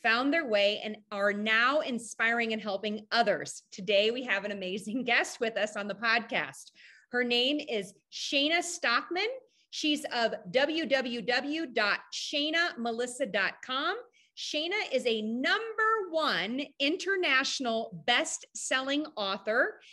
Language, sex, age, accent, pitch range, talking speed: English, female, 30-49, American, 225-315 Hz, 110 wpm